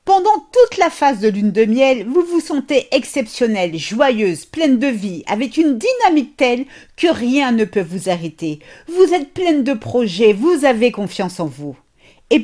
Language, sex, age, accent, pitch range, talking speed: French, female, 50-69, French, 200-285 Hz, 180 wpm